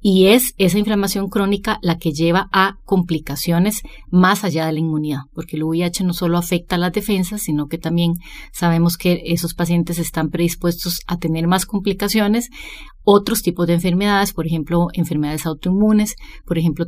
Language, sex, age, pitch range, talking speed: English, female, 30-49, 165-195 Hz, 165 wpm